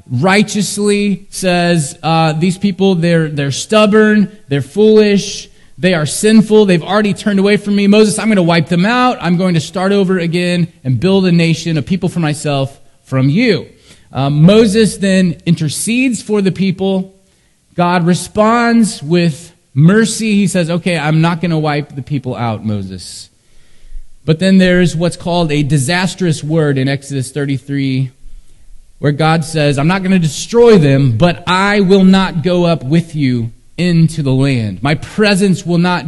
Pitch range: 145-190 Hz